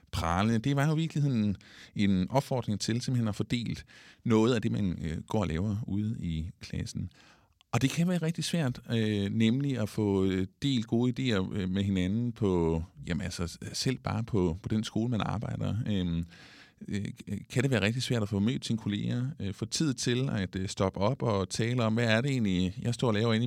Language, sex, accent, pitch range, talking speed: Danish, male, native, 95-125 Hz, 185 wpm